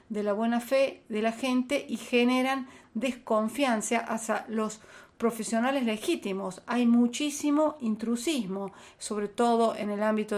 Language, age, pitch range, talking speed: Spanish, 40-59, 200-245 Hz, 125 wpm